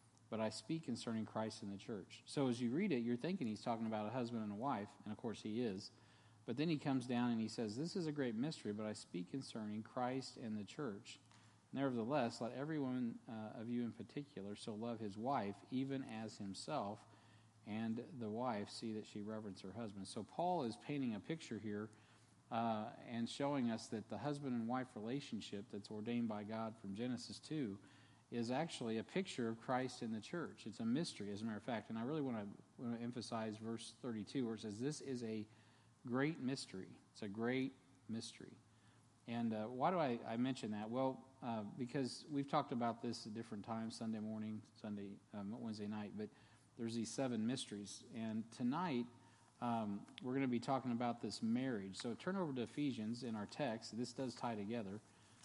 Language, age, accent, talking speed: English, 50-69, American, 205 wpm